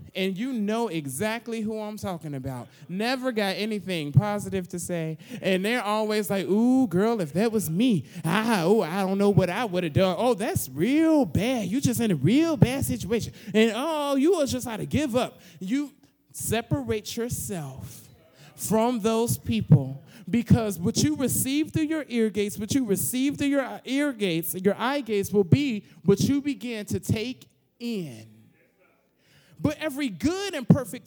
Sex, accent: male, American